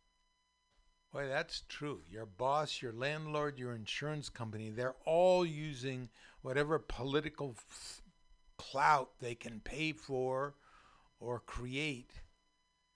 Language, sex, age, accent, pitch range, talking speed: English, male, 60-79, American, 130-200 Hz, 100 wpm